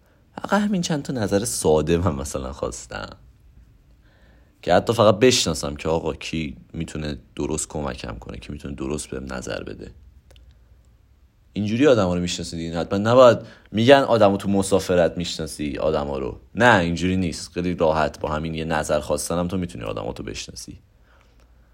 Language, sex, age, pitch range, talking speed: Persian, male, 30-49, 80-110 Hz, 155 wpm